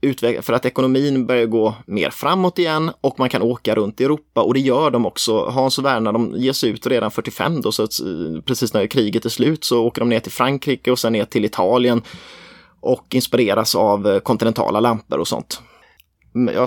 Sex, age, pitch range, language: male, 20-39, 115-135 Hz, Swedish